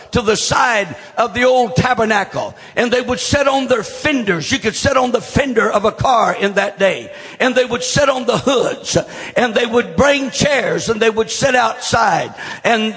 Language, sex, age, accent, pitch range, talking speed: English, male, 60-79, American, 220-270 Hz, 205 wpm